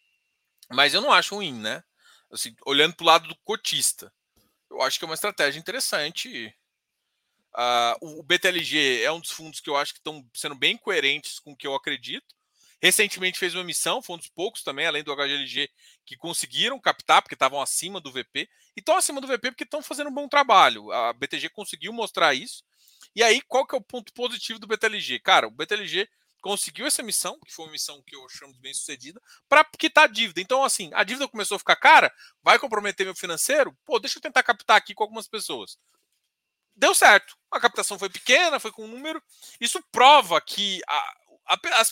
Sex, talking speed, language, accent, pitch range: male, 205 wpm, Portuguese, Brazilian, 170-265 Hz